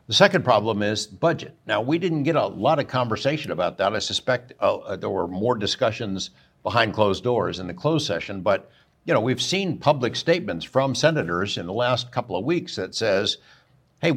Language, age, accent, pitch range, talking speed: English, 60-79, American, 110-155 Hz, 200 wpm